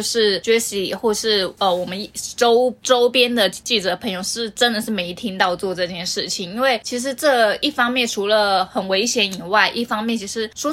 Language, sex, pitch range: Chinese, female, 195-235 Hz